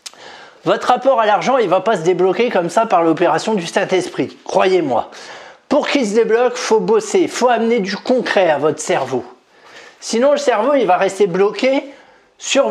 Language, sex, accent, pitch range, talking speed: French, male, French, 175-225 Hz, 190 wpm